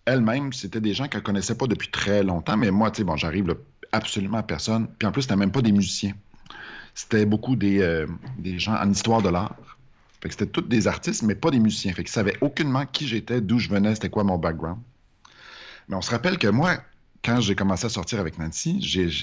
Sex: male